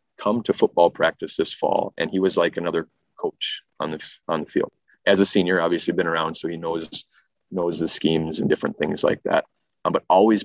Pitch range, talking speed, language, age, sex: 90-115 Hz, 215 wpm, English, 30-49, male